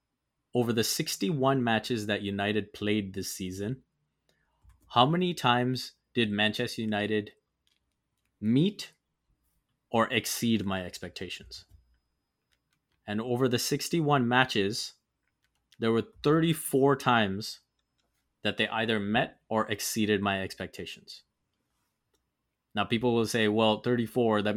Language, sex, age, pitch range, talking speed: English, male, 20-39, 100-120 Hz, 105 wpm